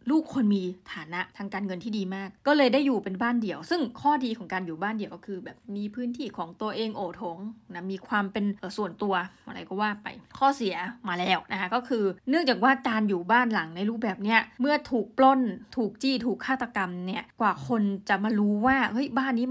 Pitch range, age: 195-250 Hz, 20-39